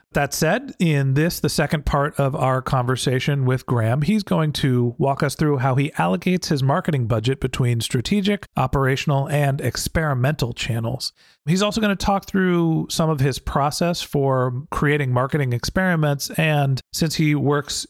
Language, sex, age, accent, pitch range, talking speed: English, male, 40-59, American, 130-155 Hz, 160 wpm